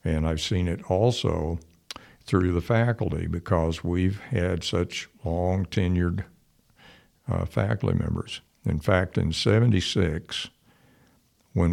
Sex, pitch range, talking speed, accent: male, 80-95 Hz, 115 wpm, American